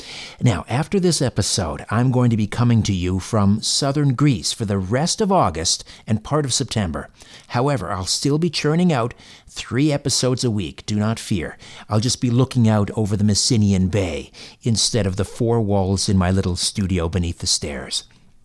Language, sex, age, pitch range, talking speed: English, male, 50-69, 105-150 Hz, 185 wpm